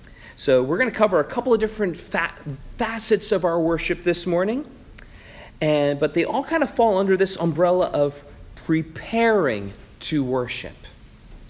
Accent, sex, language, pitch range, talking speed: American, male, English, 155-220 Hz, 145 wpm